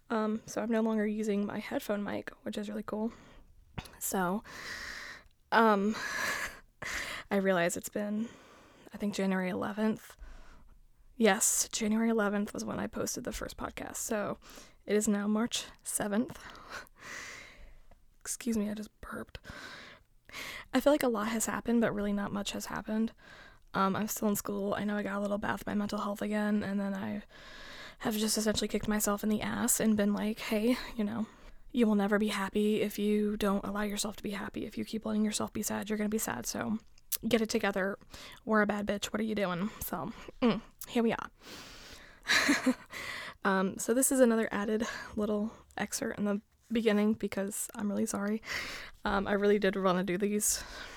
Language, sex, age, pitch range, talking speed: English, female, 10-29, 205-225 Hz, 180 wpm